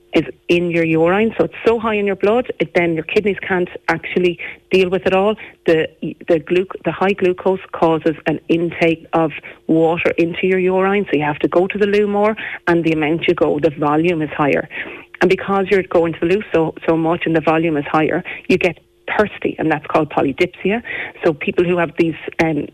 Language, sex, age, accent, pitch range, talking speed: English, female, 30-49, Irish, 165-195 Hz, 210 wpm